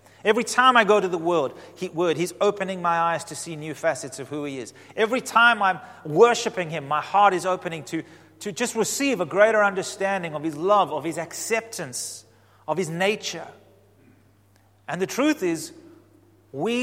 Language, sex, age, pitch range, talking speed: English, male, 30-49, 110-170 Hz, 180 wpm